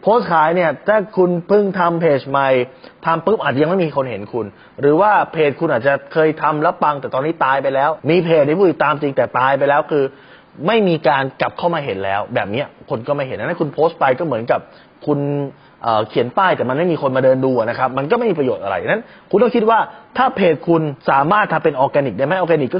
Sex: male